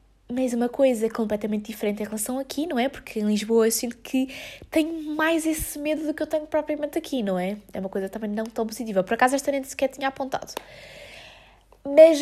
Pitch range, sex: 220-310 Hz, female